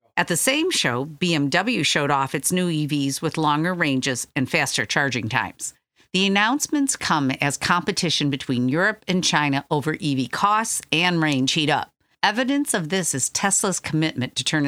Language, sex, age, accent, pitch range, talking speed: English, female, 50-69, American, 140-185 Hz, 170 wpm